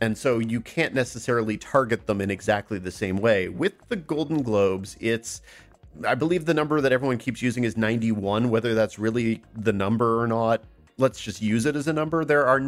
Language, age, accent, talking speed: English, 40-59, American, 205 wpm